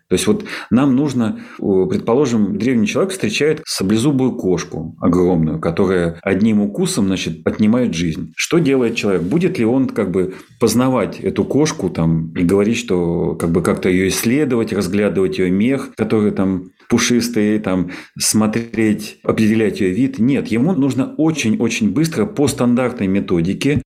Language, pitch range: Russian, 105-155 Hz